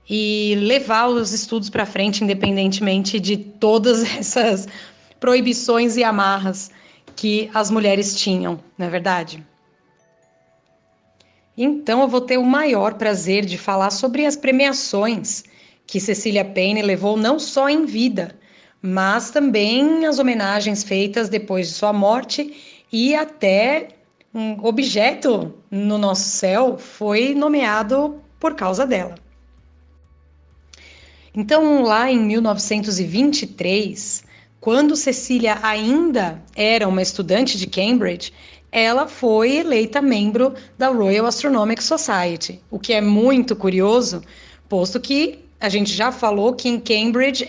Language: Portuguese